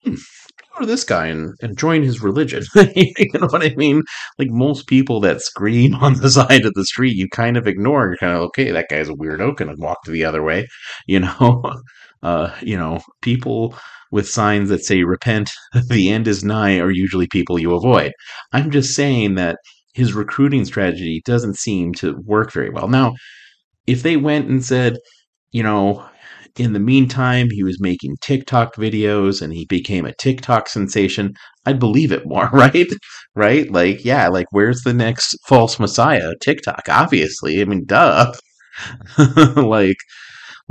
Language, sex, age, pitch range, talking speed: English, male, 30-49, 95-130 Hz, 175 wpm